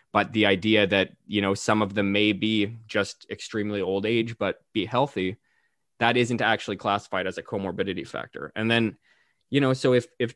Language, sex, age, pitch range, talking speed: English, male, 20-39, 95-120 Hz, 190 wpm